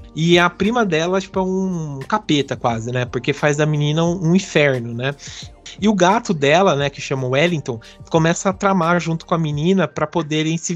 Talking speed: 200 wpm